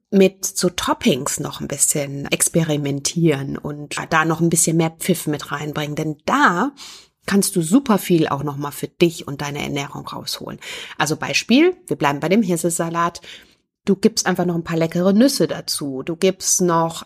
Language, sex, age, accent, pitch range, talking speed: German, female, 30-49, German, 150-190 Hz, 175 wpm